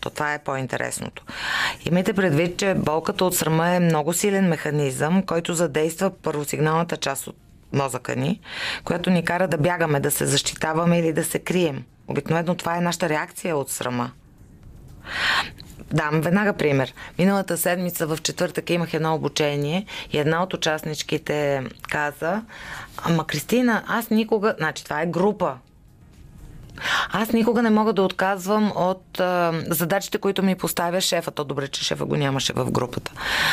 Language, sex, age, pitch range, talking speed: Bulgarian, female, 20-39, 145-180 Hz, 150 wpm